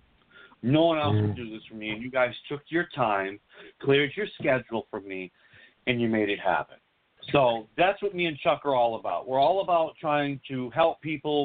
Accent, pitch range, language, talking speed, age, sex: American, 120-150 Hz, English, 210 wpm, 50-69, male